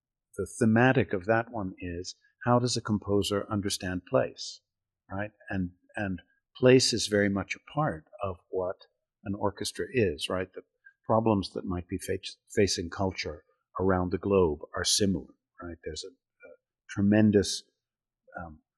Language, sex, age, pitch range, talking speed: English, male, 50-69, 90-110 Hz, 145 wpm